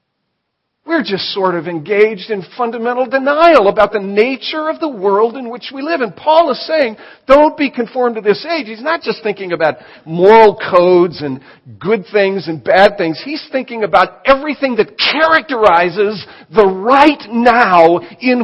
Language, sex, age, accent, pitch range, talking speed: English, male, 50-69, American, 155-255 Hz, 165 wpm